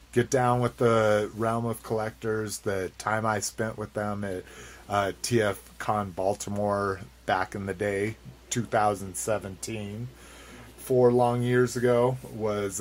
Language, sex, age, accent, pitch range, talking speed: English, male, 30-49, American, 95-120 Hz, 130 wpm